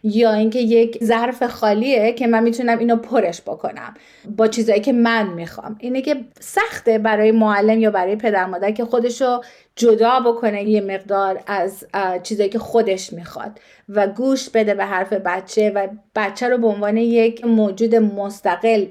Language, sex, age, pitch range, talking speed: Persian, female, 30-49, 205-245 Hz, 160 wpm